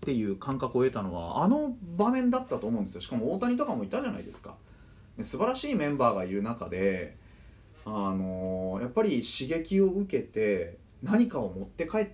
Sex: male